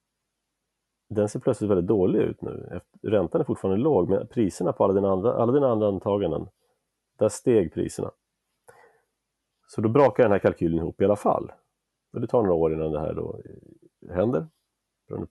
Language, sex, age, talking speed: Swedish, male, 40-59, 165 wpm